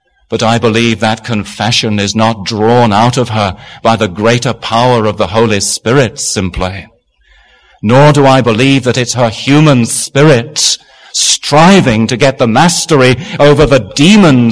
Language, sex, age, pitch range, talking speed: English, male, 40-59, 115-160 Hz, 155 wpm